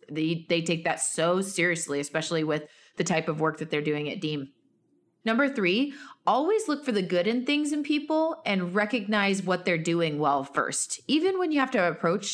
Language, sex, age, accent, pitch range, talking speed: English, female, 20-39, American, 160-200 Hz, 200 wpm